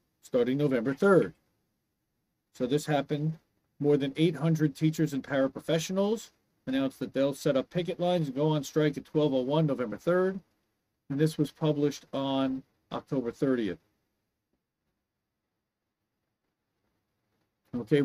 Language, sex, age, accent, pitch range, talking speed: English, male, 40-59, American, 120-155 Hz, 115 wpm